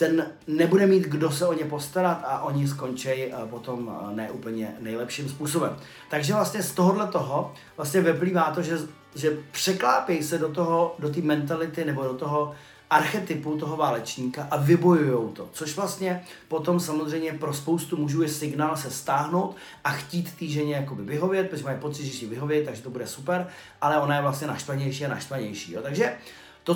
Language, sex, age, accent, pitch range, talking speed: Czech, male, 30-49, native, 140-170 Hz, 175 wpm